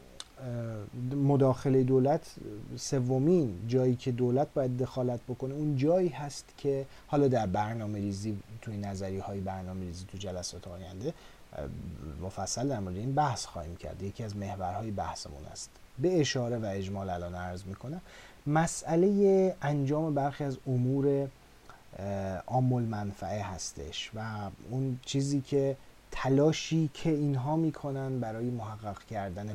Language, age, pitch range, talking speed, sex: Persian, 30-49, 95-135 Hz, 130 wpm, male